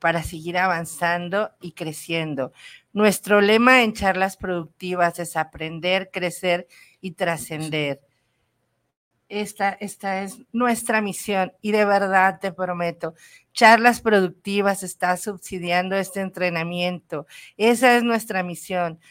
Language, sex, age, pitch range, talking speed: Spanish, female, 40-59, 170-205 Hz, 110 wpm